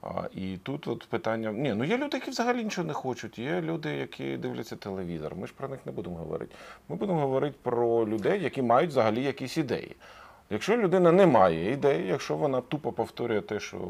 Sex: male